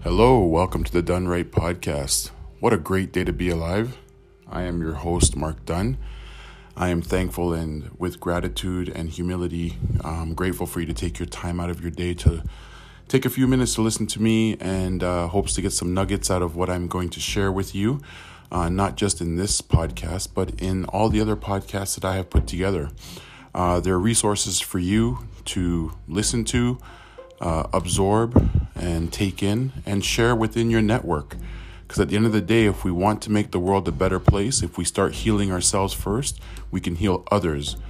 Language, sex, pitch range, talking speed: English, male, 85-100 Hz, 205 wpm